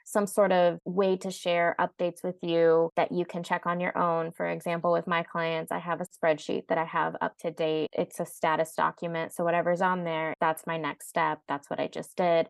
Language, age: English, 20-39